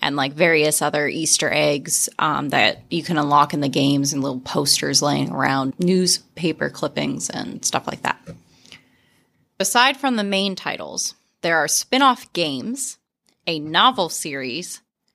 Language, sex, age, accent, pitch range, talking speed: English, female, 20-39, American, 155-195 Hz, 145 wpm